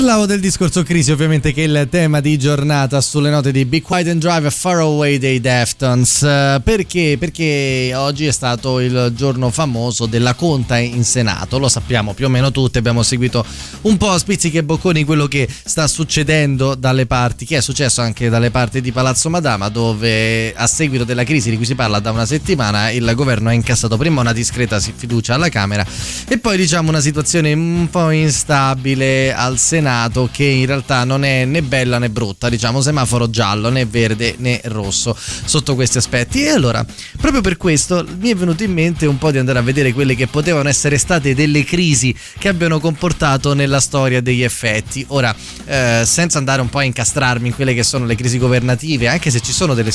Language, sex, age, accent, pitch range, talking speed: Italian, male, 20-39, native, 120-150 Hz, 195 wpm